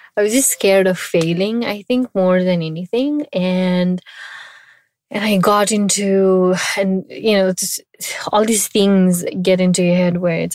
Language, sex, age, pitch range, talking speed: English, female, 20-39, 175-195 Hz, 160 wpm